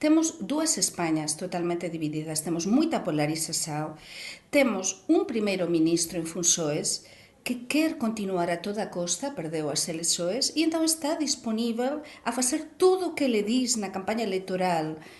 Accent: Spanish